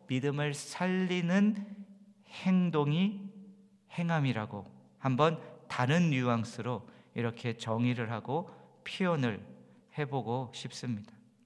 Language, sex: English, male